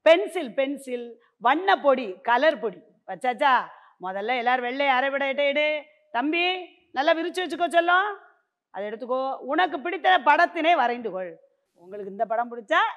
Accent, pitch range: native, 230-330 Hz